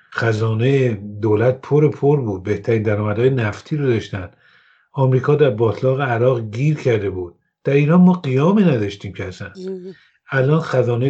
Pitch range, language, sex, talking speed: 115-145 Hz, English, male, 140 wpm